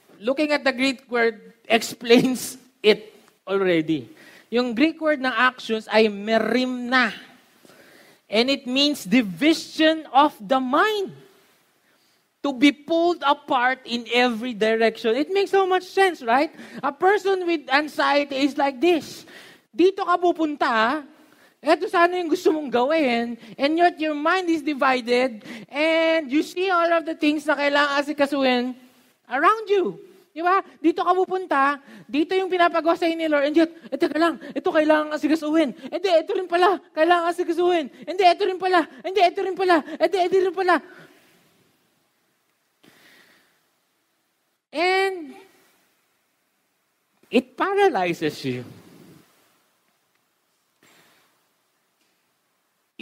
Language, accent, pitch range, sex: Filipino, native, 255-345 Hz, male